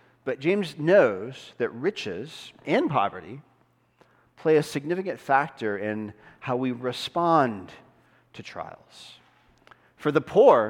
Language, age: English, 40-59